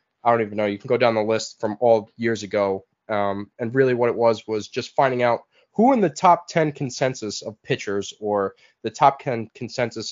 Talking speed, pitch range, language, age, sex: 220 wpm, 105-125 Hz, English, 20-39, male